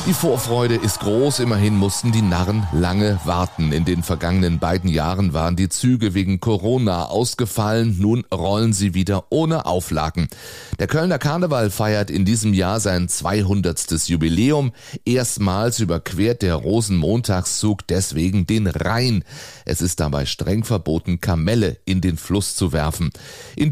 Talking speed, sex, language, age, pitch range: 140 wpm, male, German, 30-49, 90-115 Hz